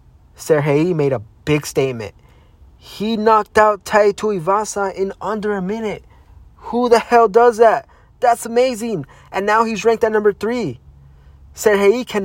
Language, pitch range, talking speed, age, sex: English, 140-200 Hz, 145 wpm, 20-39, male